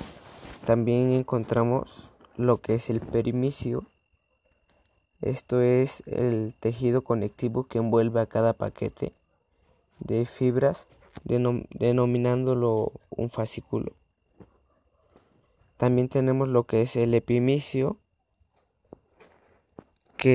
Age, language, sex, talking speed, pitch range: 20-39, Spanish, male, 90 wpm, 110-125 Hz